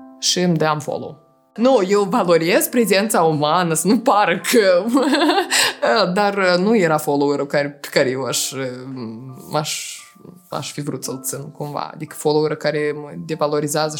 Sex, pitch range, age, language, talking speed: female, 155-195 Hz, 20-39, Romanian, 135 wpm